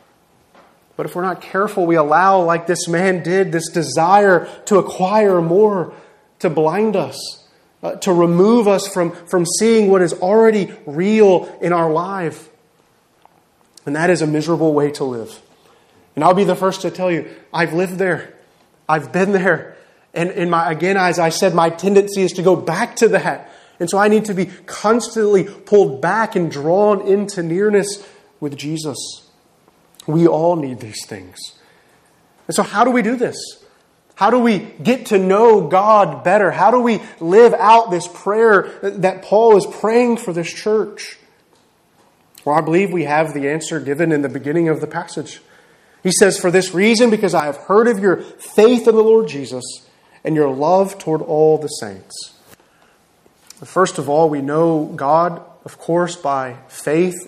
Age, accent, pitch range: 30-49, American, 160-200 Hz